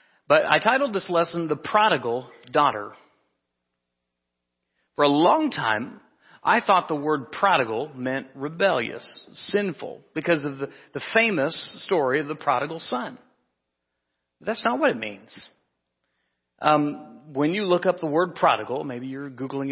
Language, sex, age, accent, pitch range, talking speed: English, male, 40-59, American, 105-160 Hz, 140 wpm